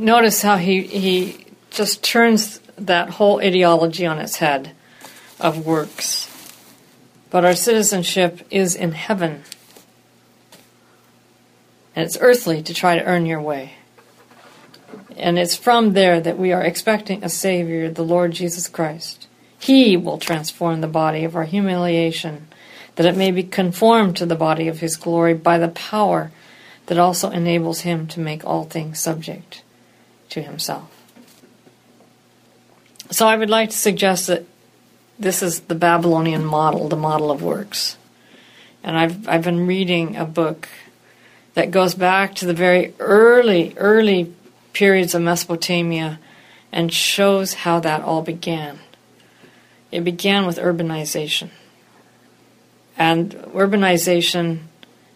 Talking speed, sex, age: 135 wpm, female, 50-69